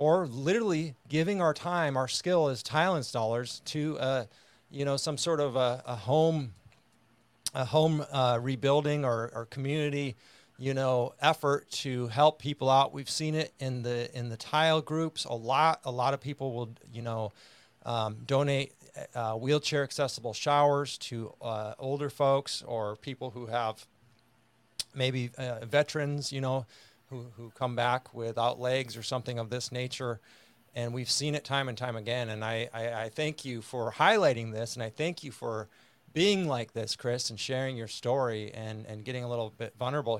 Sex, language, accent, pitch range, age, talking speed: male, English, American, 115-145 Hz, 40-59, 180 wpm